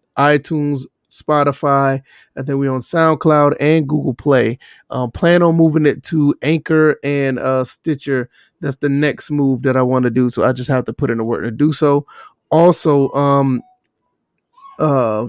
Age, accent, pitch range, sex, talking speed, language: 30-49, American, 130-150 Hz, male, 175 wpm, English